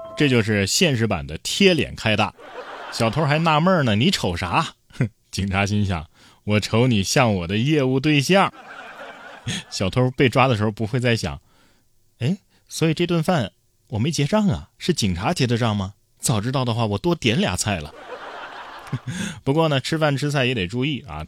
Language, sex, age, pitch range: Chinese, male, 20-39, 105-165 Hz